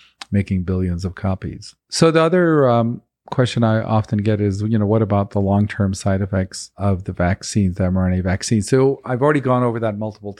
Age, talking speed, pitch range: 50-69, 195 wpm, 100-115 Hz